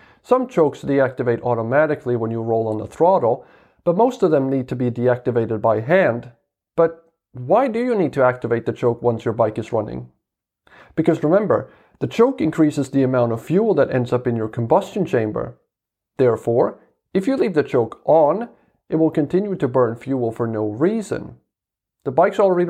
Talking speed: 180 wpm